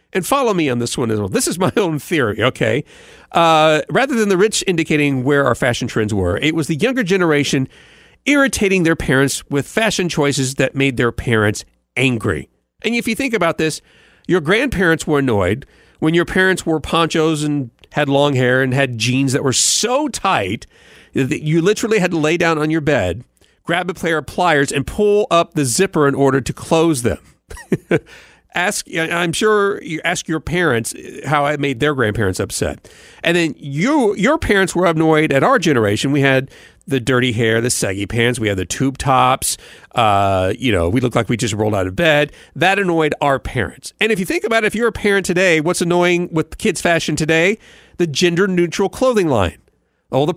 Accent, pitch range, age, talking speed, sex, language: American, 130-185 Hz, 40-59, 200 wpm, male, English